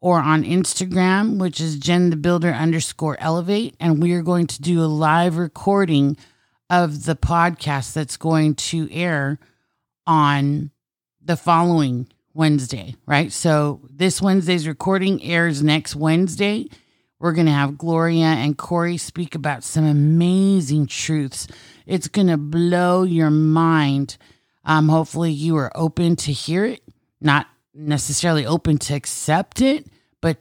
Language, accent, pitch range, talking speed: English, American, 145-170 Hz, 140 wpm